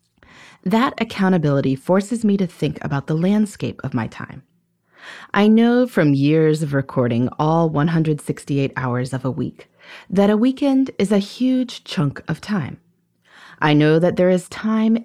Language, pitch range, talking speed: English, 140-200 Hz, 155 wpm